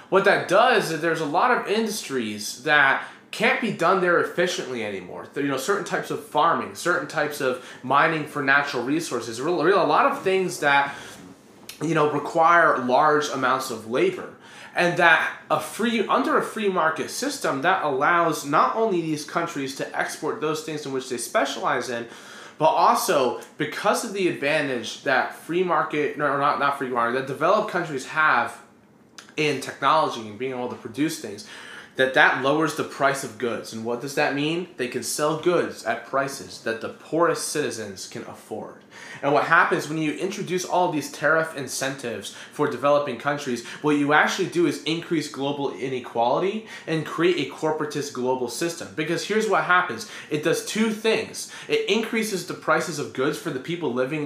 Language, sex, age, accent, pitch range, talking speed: English, male, 20-39, American, 130-175 Hz, 180 wpm